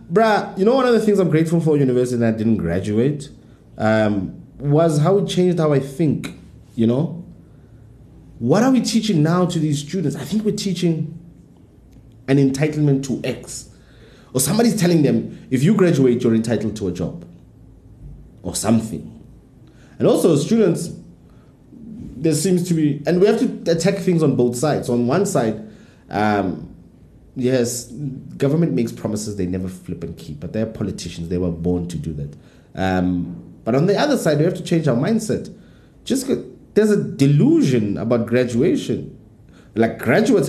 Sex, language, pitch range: male, English, 110-165 Hz